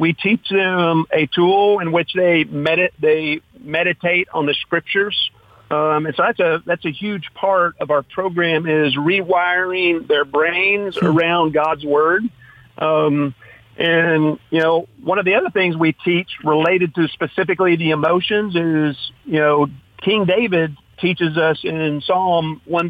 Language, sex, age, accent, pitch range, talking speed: English, male, 50-69, American, 155-190 Hz, 150 wpm